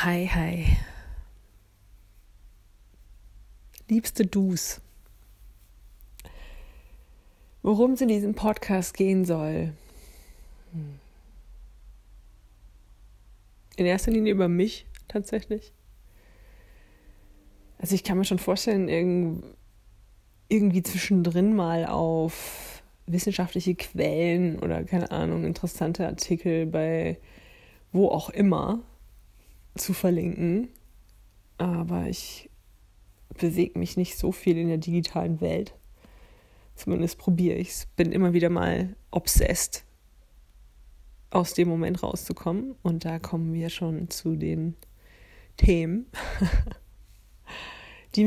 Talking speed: 95 wpm